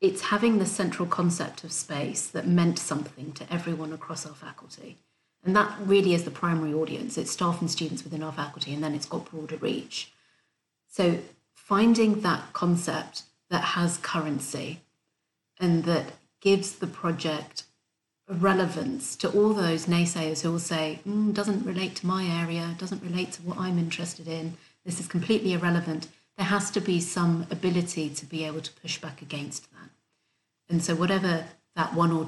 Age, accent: 40-59, British